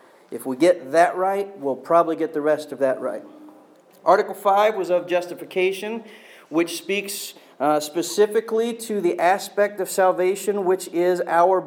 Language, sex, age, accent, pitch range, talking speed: English, male, 40-59, American, 150-195 Hz, 155 wpm